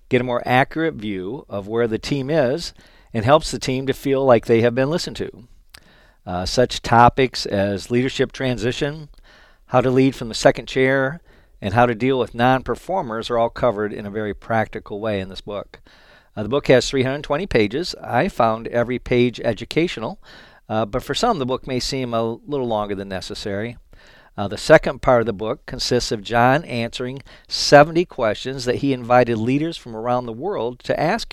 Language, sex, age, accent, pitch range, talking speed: English, male, 50-69, American, 115-135 Hz, 190 wpm